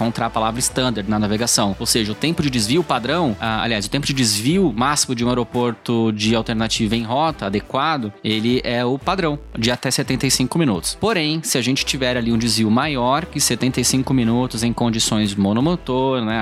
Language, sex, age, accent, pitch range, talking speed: Portuguese, male, 20-39, Brazilian, 115-145 Hz, 185 wpm